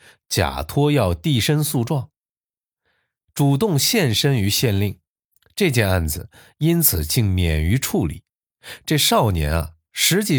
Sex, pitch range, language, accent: male, 95-145 Hz, Chinese, native